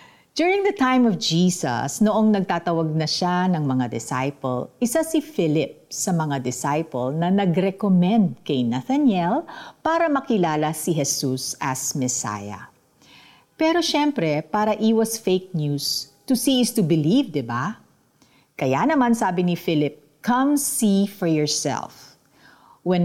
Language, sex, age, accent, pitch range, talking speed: Filipino, female, 50-69, native, 155-240 Hz, 135 wpm